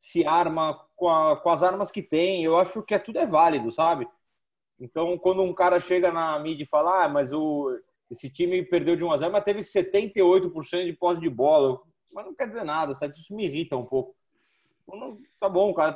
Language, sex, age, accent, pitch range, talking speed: Portuguese, male, 20-39, Brazilian, 155-195 Hz, 200 wpm